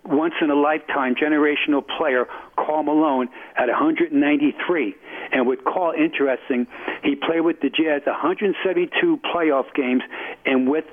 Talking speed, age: 115 wpm, 60-79